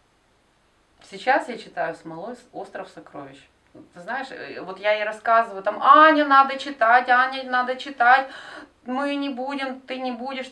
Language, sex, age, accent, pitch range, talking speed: Russian, female, 20-39, native, 175-255 Hz, 135 wpm